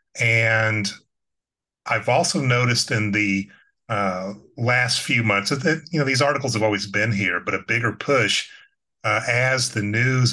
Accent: American